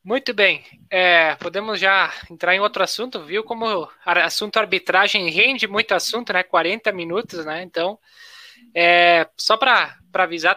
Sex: male